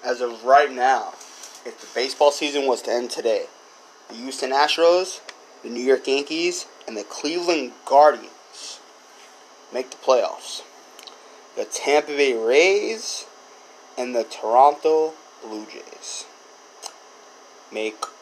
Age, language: 20-39, English